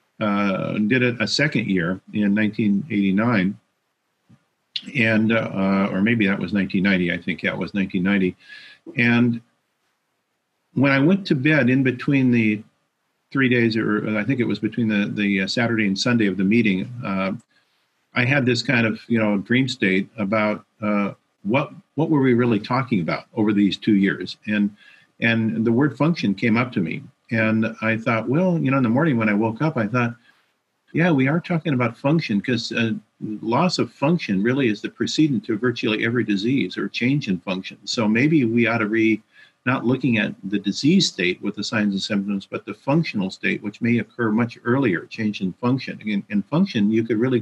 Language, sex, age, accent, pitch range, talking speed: English, male, 50-69, American, 105-125 Hz, 190 wpm